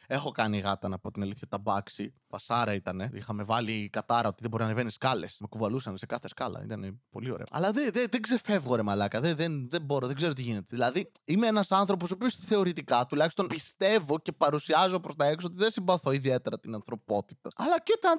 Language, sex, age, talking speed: Greek, male, 20-39, 220 wpm